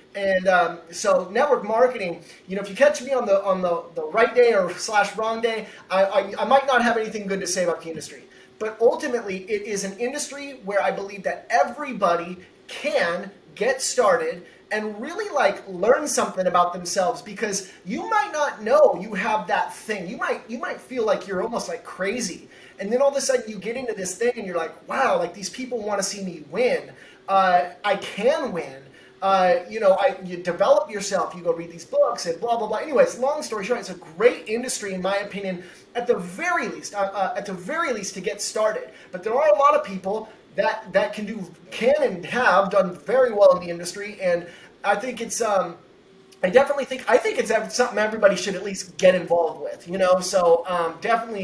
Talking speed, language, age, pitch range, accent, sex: 215 wpm, English, 30-49, 185-255 Hz, American, male